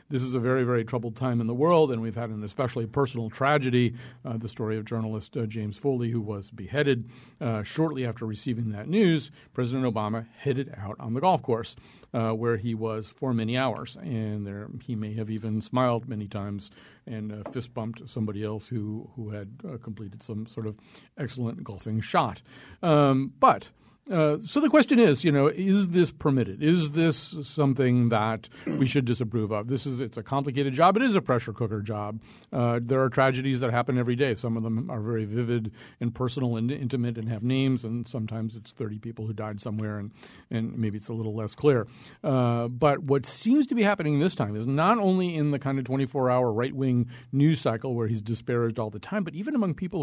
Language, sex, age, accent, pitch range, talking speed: English, male, 50-69, American, 110-140 Hz, 210 wpm